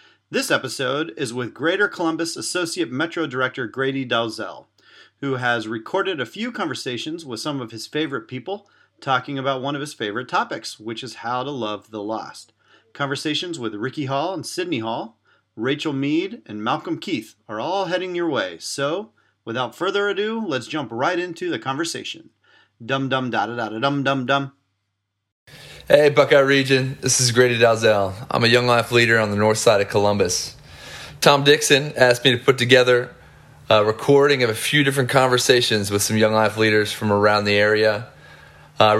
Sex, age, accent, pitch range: male, 30-49, American, 110-145 Hz